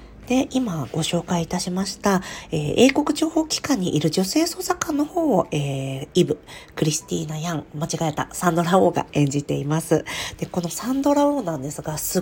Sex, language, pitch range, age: female, Japanese, 155-215 Hz, 40-59